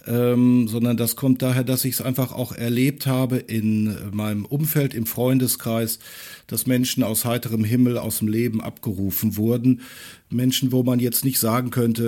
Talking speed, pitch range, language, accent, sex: 170 wpm, 110-130 Hz, German, German, male